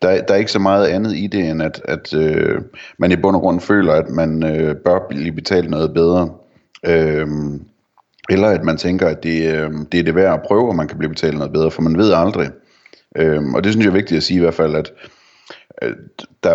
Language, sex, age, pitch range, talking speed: Danish, male, 30-49, 80-95 Hz, 230 wpm